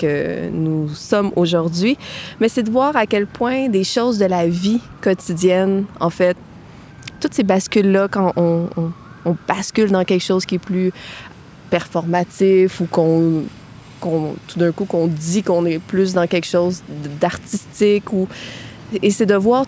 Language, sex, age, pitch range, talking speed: French, female, 20-39, 170-195 Hz, 165 wpm